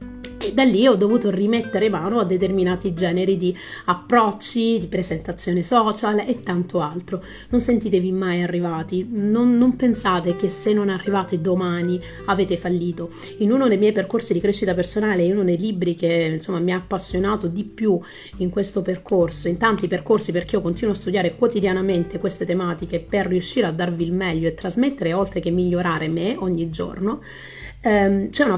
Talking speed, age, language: 170 wpm, 30-49, Italian